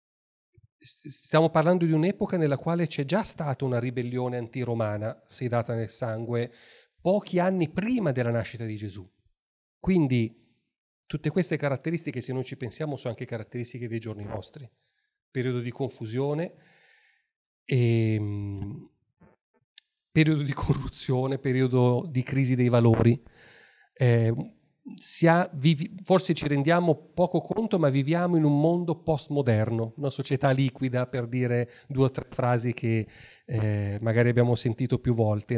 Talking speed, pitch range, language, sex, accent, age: 130 wpm, 120-150 Hz, Italian, male, native, 40-59